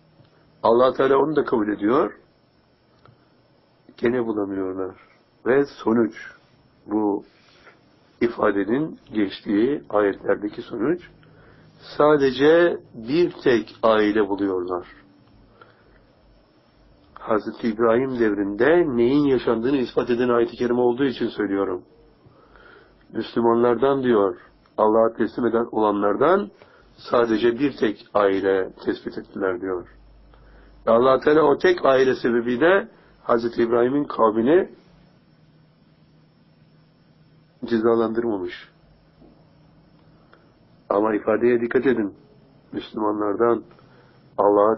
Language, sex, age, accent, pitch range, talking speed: Turkish, male, 60-79, native, 105-130 Hz, 80 wpm